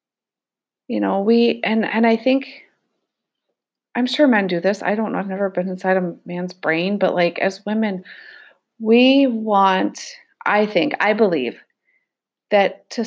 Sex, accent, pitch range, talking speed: female, American, 180-230 Hz, 155 wpm